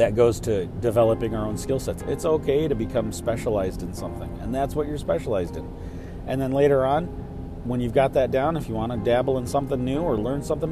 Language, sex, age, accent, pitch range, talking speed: English, male, 40-59, American, 90-130 Hz, 230 wpm